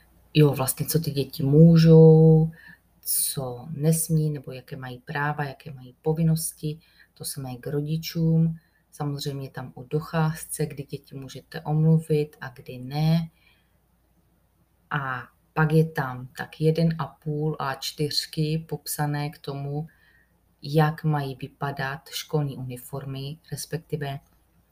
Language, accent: Czech, native